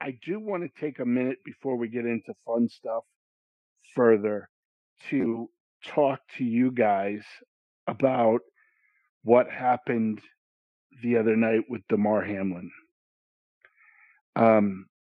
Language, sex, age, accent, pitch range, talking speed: English, male, 50-69, American, 110-145 Hz, 120 wpm